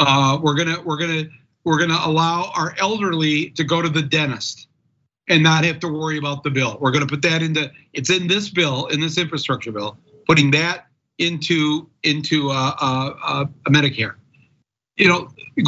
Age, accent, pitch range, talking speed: 50-69, American, 135-165 Hz, 180 wpm